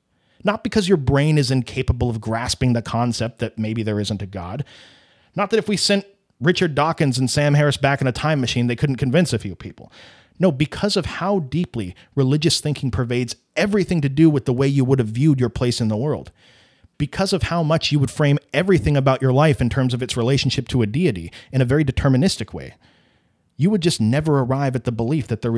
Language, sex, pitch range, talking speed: English, male, 115-150 Hz, 220 wpm